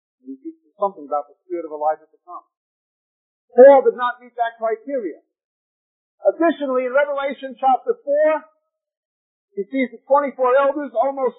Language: English